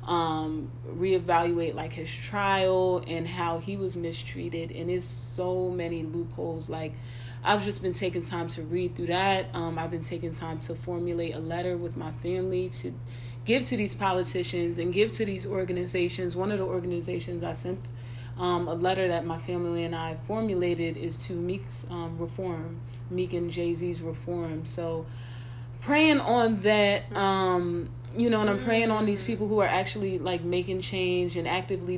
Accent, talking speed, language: American, 175 wpm, English